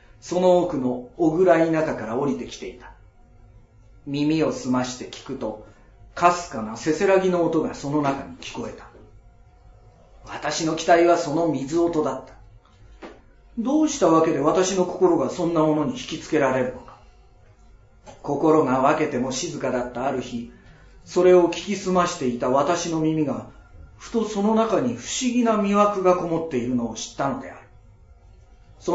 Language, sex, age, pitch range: Japanese, male, 40-59, 120-175 Hz